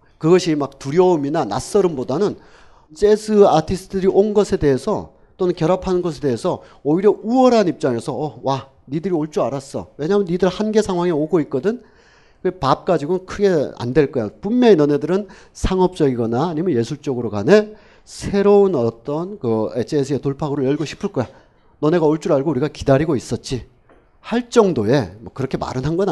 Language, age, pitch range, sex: Korean, 40-59, 125-185 Hz, male